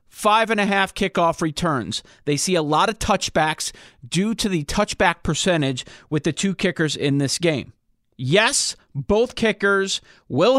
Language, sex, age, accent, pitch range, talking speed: English, male, 40-59, American, 155-200 Hz, 140 wpm